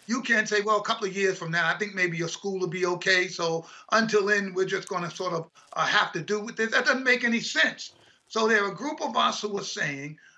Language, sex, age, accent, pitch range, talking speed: English, male, 50-69, American, 185-225 Hz, 280 wpm